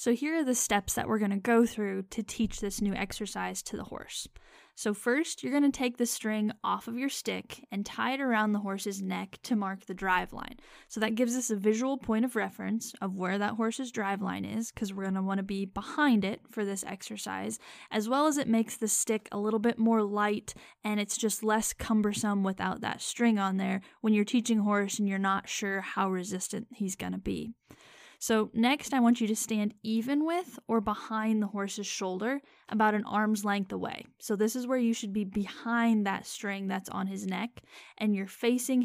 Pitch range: 200-235 Hz